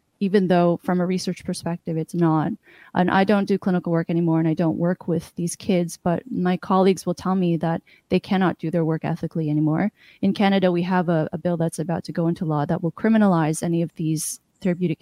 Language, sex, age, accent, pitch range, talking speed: English, female, 20-39, American, 170-200 Hz, 225 wpm